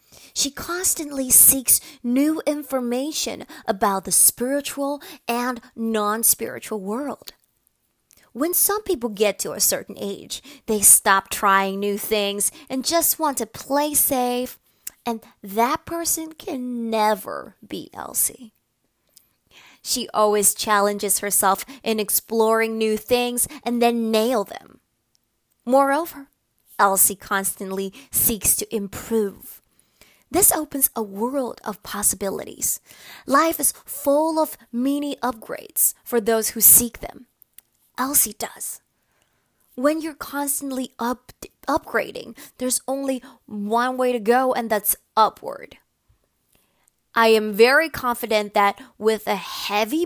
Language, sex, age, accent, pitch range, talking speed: English, female, 20-39, American, 215-275 Hz, 115 wpm